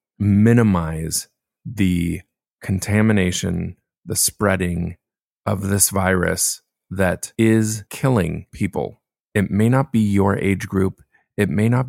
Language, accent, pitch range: English, American, 85-105 Hz